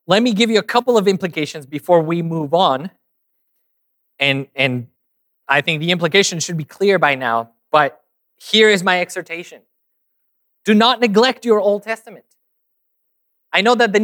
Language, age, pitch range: English, 20-39, 165-210 Hz